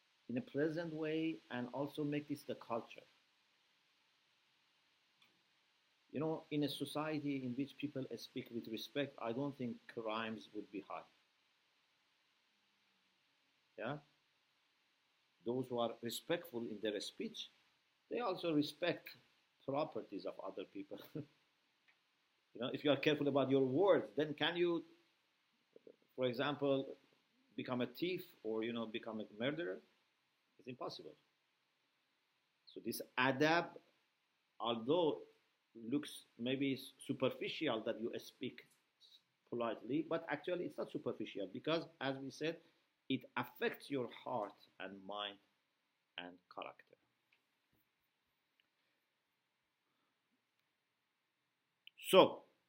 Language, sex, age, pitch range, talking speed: English, male, 50-69, 120-155 Hz, 110 wpm